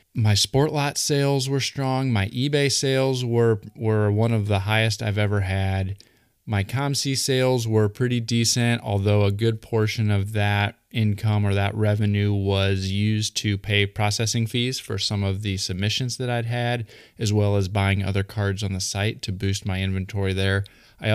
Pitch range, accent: 100-115 Hz, American